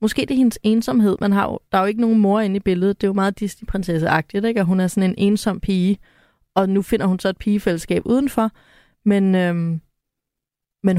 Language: Danish